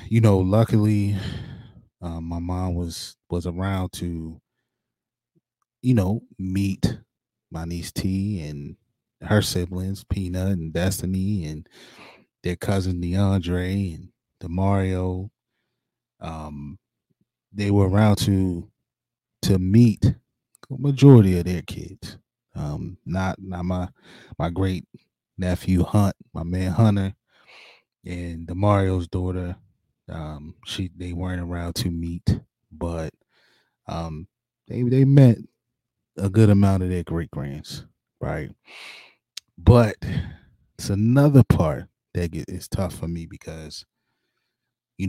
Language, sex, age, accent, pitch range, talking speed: English, male, 20-39, American, 85-105 Hz, 110 wpm